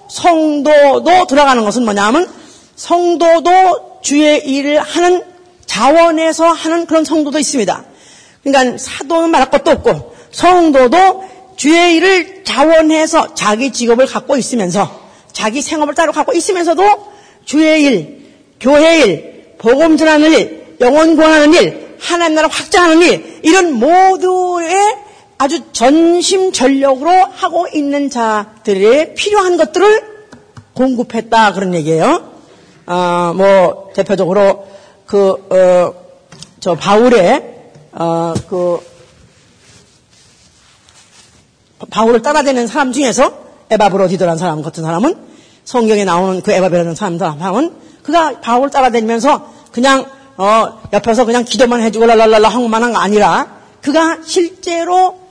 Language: Korean